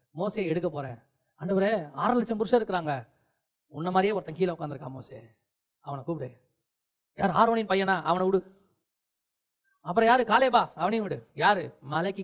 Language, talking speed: Tamil, 140 wpm